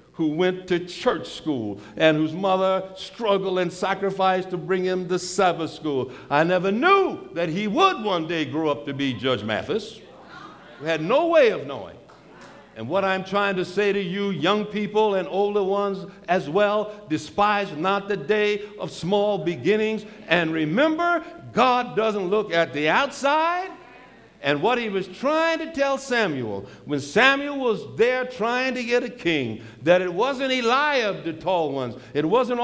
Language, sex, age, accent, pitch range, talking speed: English, male, 60-79, American, 180-245 Hz, 170 wpm